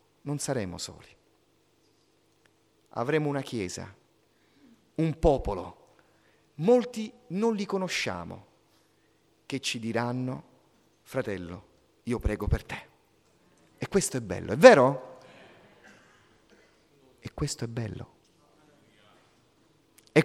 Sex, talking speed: male, 90 wpm